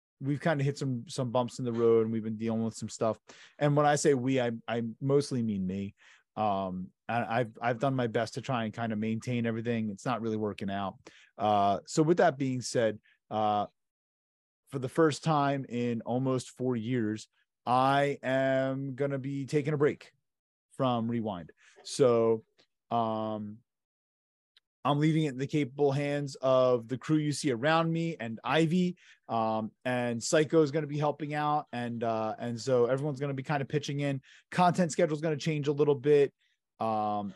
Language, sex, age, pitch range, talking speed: English, male, 30-49, 115-145 Hz, 195 wpm